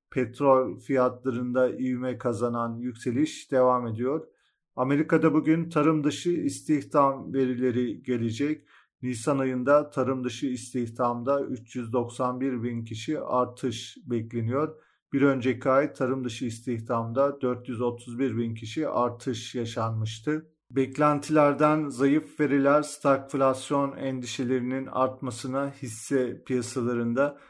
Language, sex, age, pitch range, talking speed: Turkish, male, 40-59, 125-145 Hz, 95 wpm